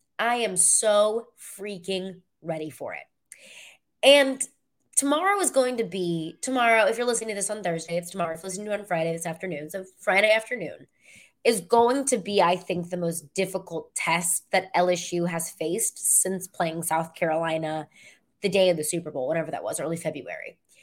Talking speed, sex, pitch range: 185 wpm, female, 170-215 Hz